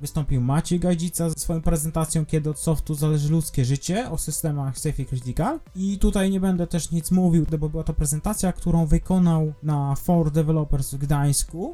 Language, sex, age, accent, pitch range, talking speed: Polish, male, 20-39, native, 125-170 Hz, 180 wpm